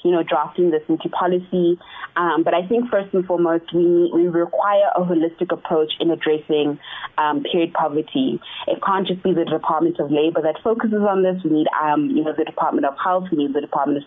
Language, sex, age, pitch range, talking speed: English, female, 20-39, 150-175 Hz, 220 wpm